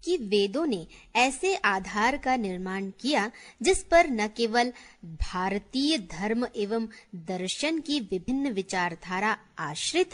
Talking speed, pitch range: 120 wpm, 195-270 Hz